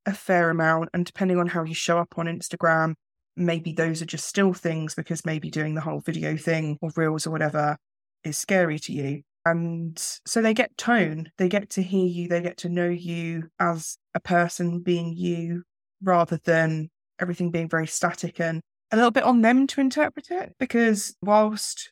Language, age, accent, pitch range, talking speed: English, 20-39, British, 160-180 Hz, 190 wpm